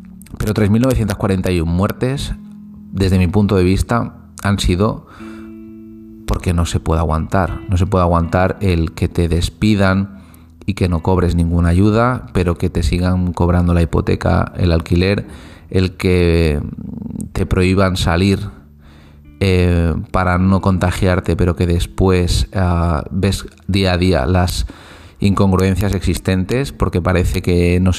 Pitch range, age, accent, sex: 90-100 Hz, 30-49, Spanish, male